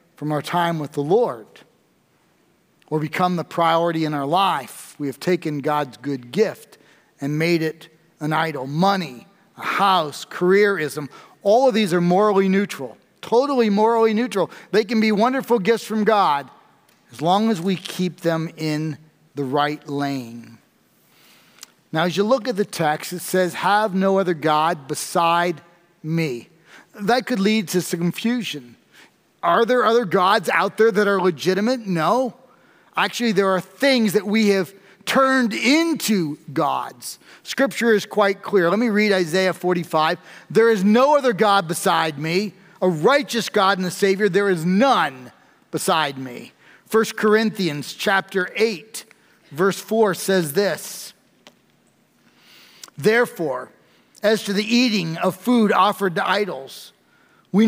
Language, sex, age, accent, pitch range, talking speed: English, male, 40-59, American, 165-215 Hz, 145 wpm